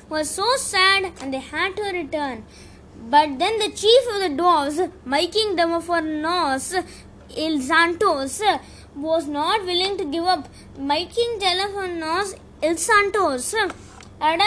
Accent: Indian